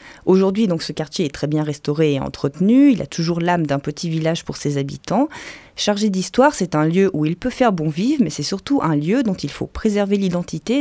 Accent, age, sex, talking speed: French, 30-49, female, 220 wpm